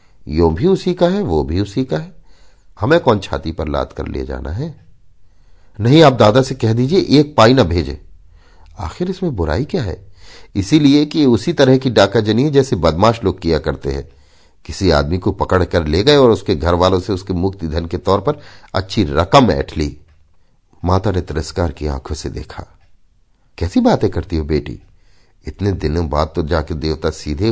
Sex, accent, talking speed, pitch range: male, native, 190 wpm, 80-115 Hz